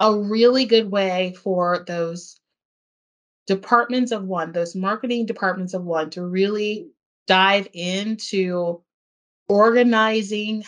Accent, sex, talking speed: American, female, 105 wpm